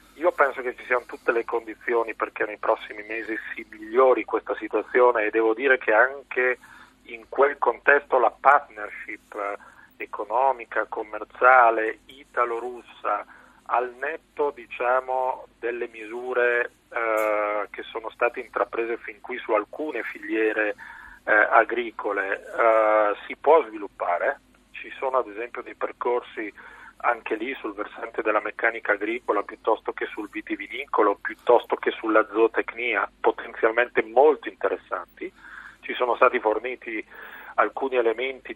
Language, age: Italian, 40-59